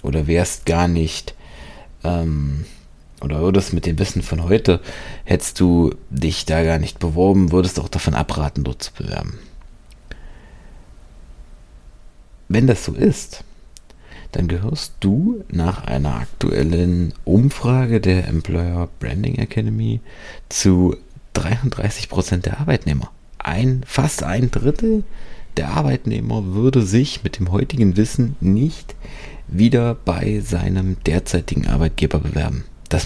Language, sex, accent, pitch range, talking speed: German, male, German, 85-120 Hz, 120 wpm